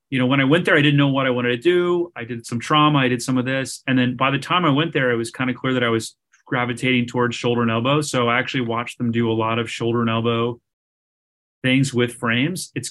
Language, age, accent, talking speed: English, 30-49, American, 280 wpm